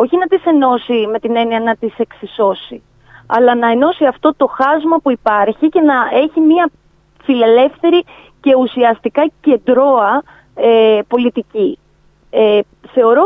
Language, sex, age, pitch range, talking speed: Greek, female, 30-49, 220-290 Hz, 125 wpm